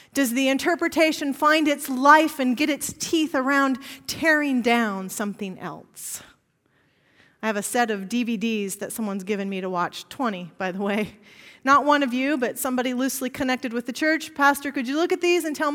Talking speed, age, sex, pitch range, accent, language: 190 wpm, 40-59, female, 215-295 Hz, American, English